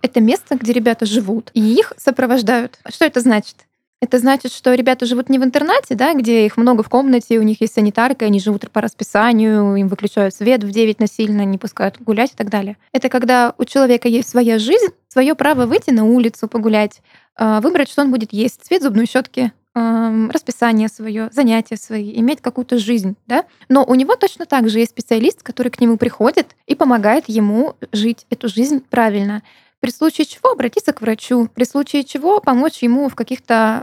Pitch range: 225-265 Hz